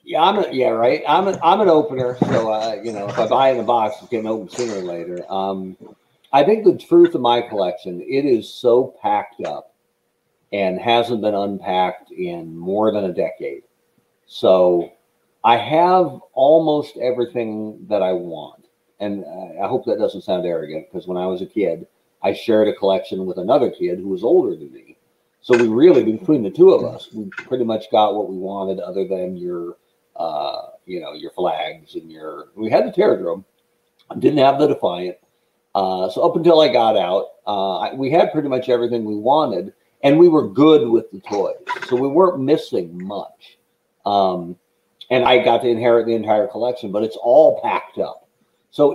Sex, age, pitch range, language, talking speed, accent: male, 50-69, 95-150 Hz, English, 190 wpm, American